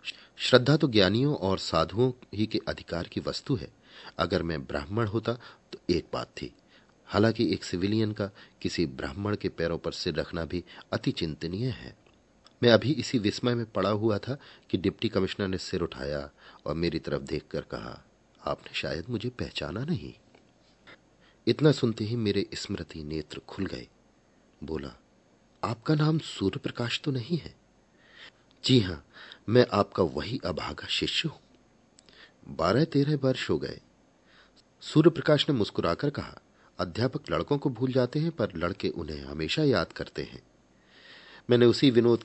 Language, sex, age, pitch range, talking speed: Hindi, male, 40-59, 90-130 Hz, 150 wpm